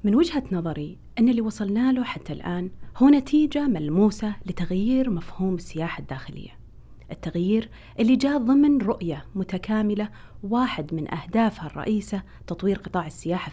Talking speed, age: 130 wpm, 30-49